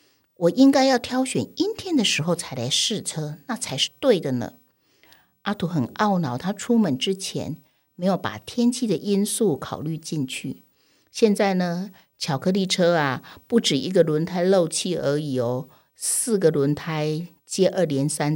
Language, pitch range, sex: Chinese, 155-215 Hz, female